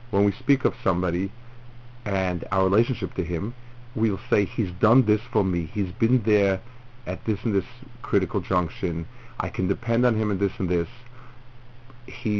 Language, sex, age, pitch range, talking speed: English, male, 50-69, 95-120 Hz, 175 wpm